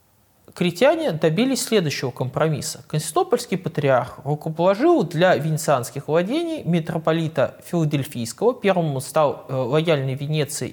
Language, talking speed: Russian, 90 wpm